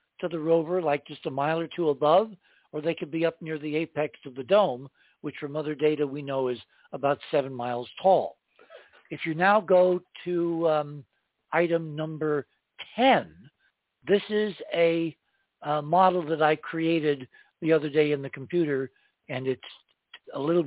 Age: 60-79